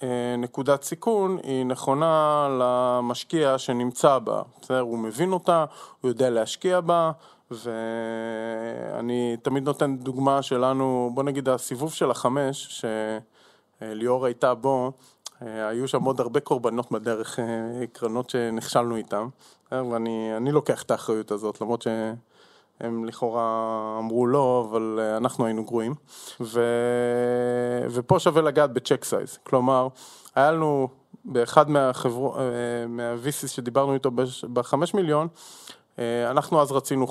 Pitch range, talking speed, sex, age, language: 115-140 Hz, 115 wpm, male, 20-39, Hebrew